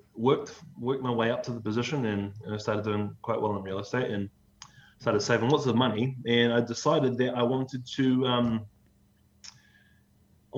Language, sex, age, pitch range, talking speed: English, male, 20-39, 105-125 Hz, 185 wpm